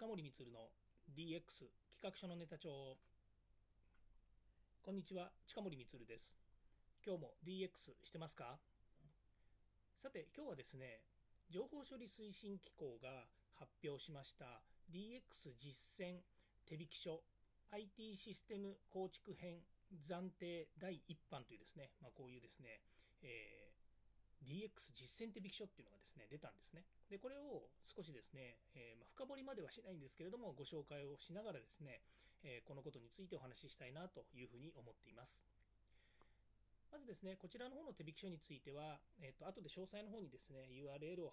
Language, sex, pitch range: Japanese, male, 120-185 Hz